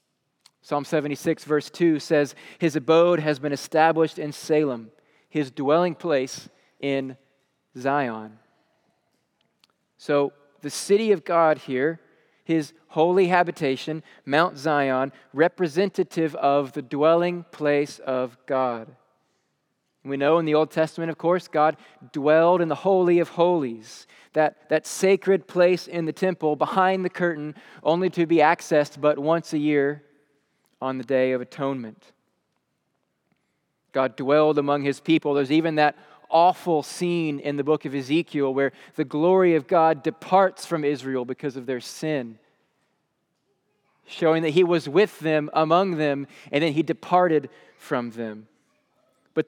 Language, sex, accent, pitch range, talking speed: English, male, American, 145-175 Hz, 140 wpm